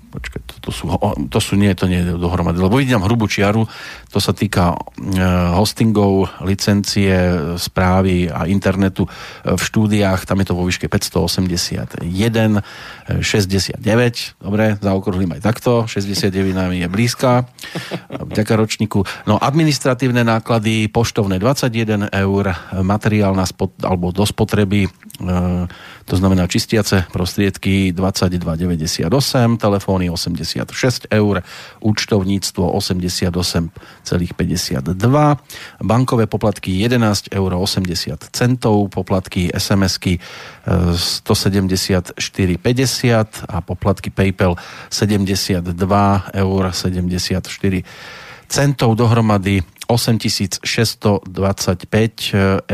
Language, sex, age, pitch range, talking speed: Slovak, male, 40-59, 95-110 Hz, 90 wpm